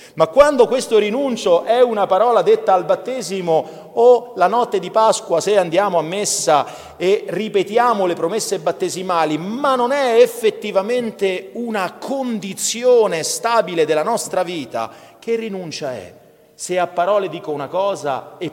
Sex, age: male, 40-59